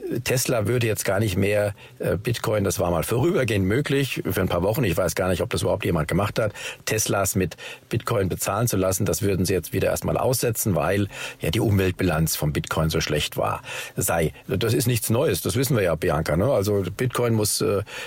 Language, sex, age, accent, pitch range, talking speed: German, male, 50-69, German, 100-125 Hz, 215 wpm